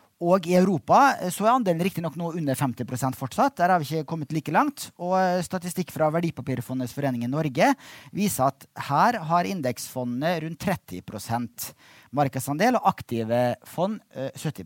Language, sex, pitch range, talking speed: English, male, 130-185 Hz, 160 wpm